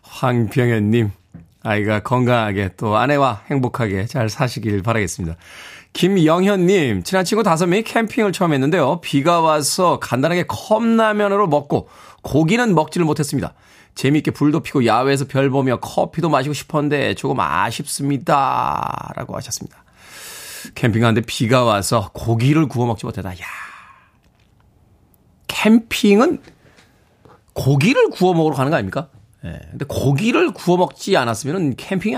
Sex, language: male, Korean